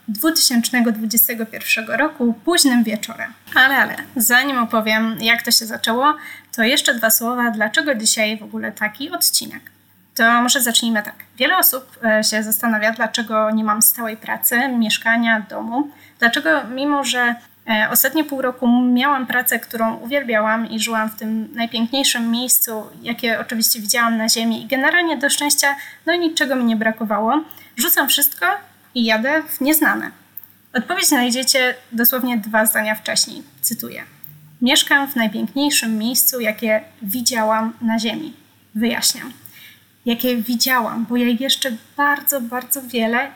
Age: 20-39